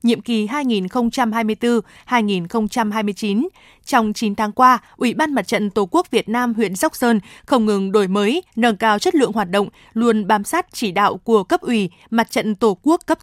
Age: 20-39